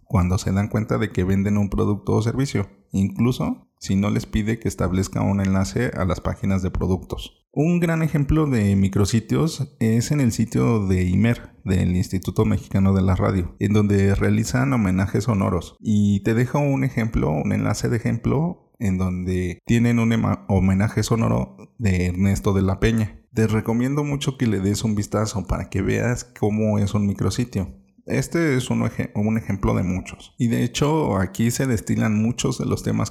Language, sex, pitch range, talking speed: Spanish, male, 95-120 Hz, 180 wpm